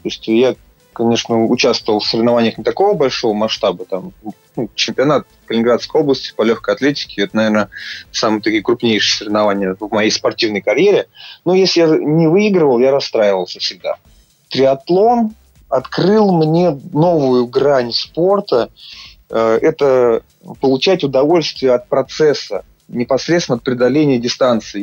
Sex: male